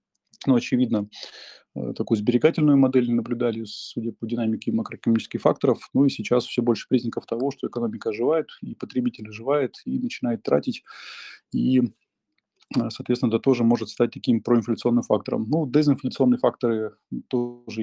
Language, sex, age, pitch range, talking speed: Russian, male, 20-39, 115-135 Hz, 135 wpm